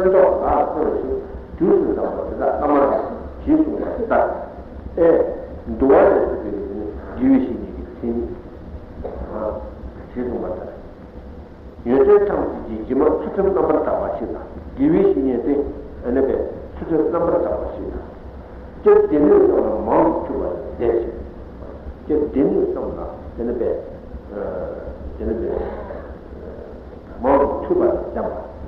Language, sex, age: Italian, male, 60-79